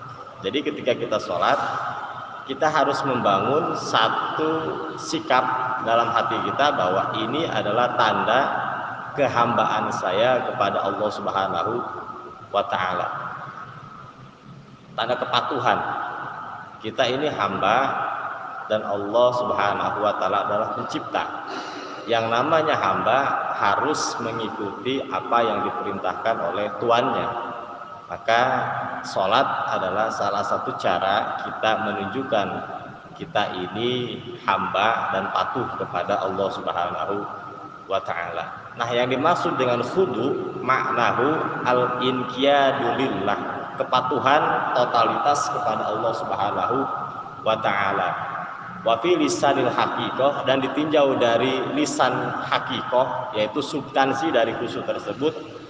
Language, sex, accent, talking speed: Indonesian, male, native, 95 wpm